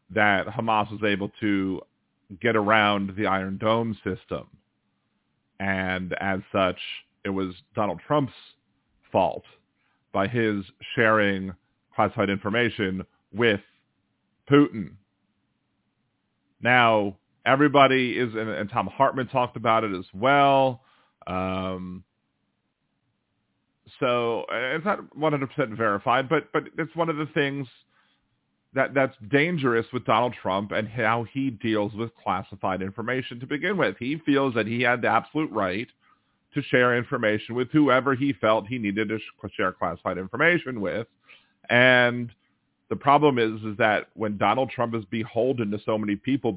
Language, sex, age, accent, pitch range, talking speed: English, male, 40-59, American, 100-125 Hz, 135 wpm